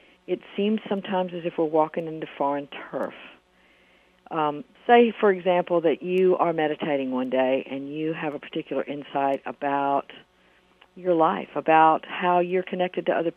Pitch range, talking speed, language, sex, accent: 150-195 Hz, 155 wpm, English, female, American